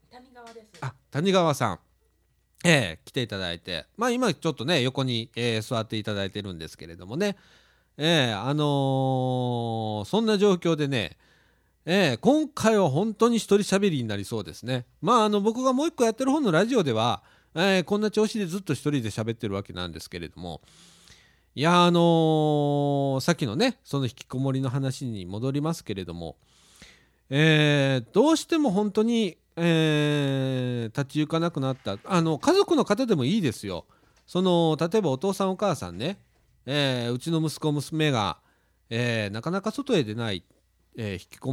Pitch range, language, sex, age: 115-185 Hz, Japanese, male, 40-59